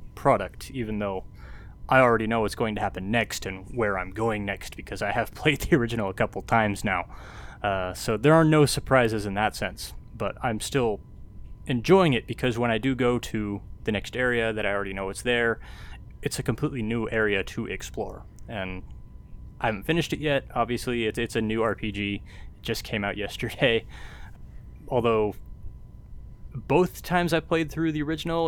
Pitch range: 100-135 Hz